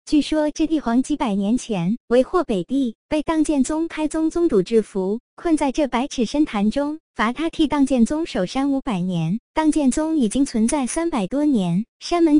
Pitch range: 225-305 Hz